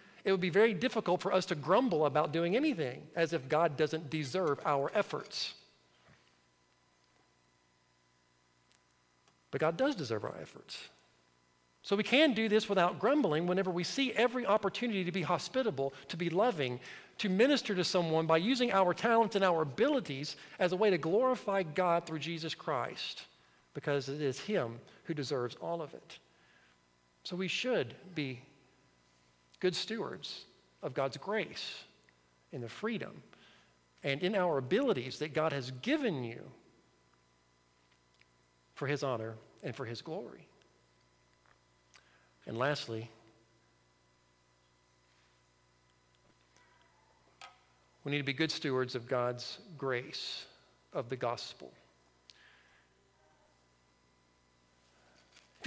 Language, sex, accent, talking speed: English, male, American, 125 wpm